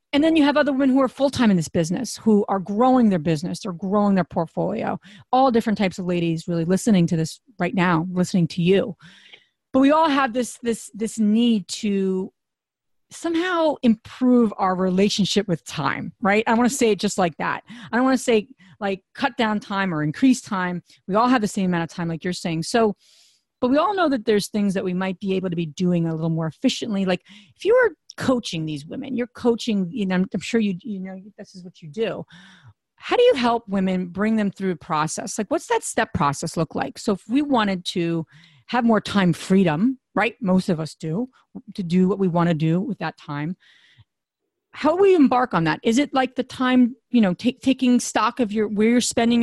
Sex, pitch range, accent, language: female, 180-245 Hz, American, English